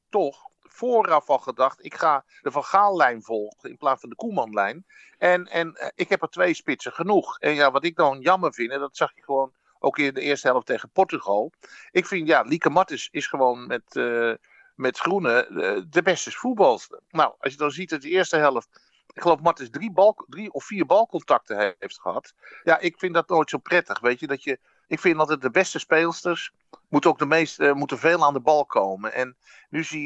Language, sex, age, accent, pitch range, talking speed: Dutch, male, 50-69, Dutch, 140-185 Hz, 210 wpm